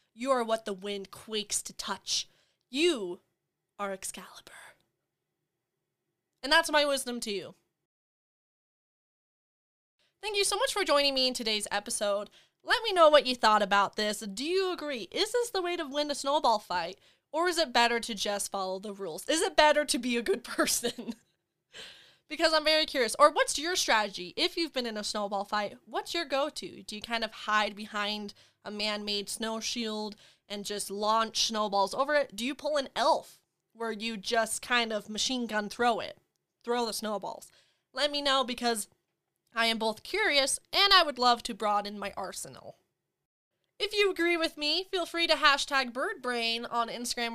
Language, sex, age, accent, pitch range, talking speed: English, female, 20-39, American, 210-295 Hz, 180 wpm